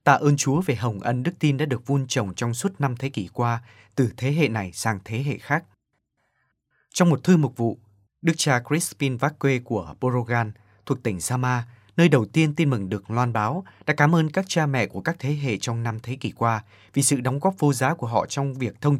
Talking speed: 235 wpm